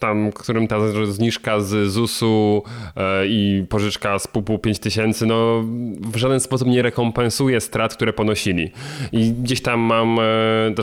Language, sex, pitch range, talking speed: Polish, male, 100-125 Hz, 135 wpm